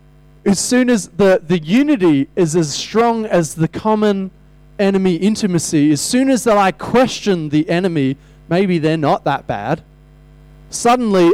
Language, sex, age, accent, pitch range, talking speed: English, male, 20-39, Australian, 150-185 Hz, 150 wpm